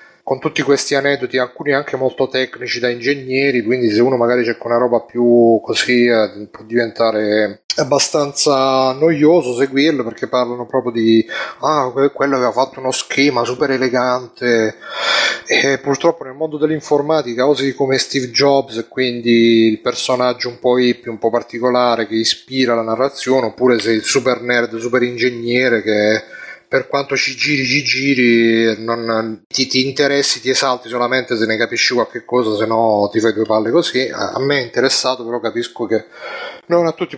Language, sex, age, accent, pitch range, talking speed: Italian, male, 30-49, native, 120-140 Hz, 165 wpm